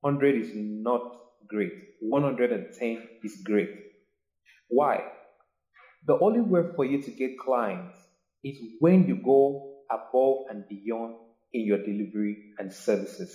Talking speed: 125 wpm